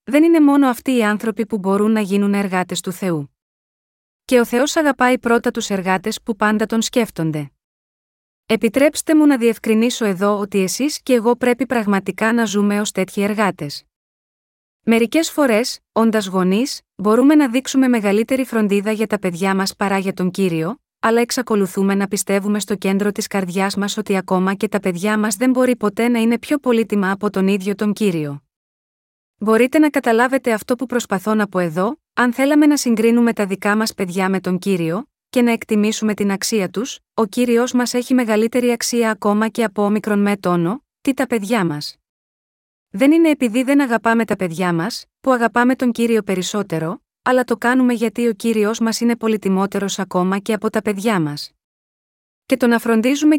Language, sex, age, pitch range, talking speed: Greek, female, 30-49, 195-245 Hz, 180 wpm